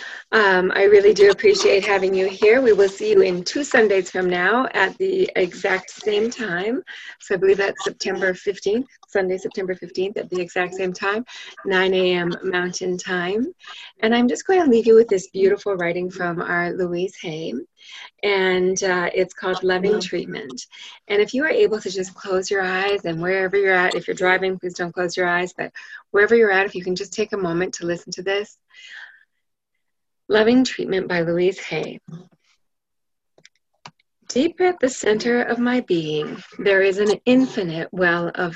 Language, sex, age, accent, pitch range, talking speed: English, female, 30-49, American, 180-225 Hz, 180 wpm